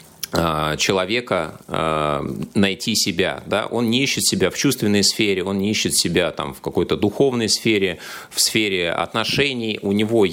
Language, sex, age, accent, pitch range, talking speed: Russian, male, 20-39, native, 85-115 Hz, 145 wpm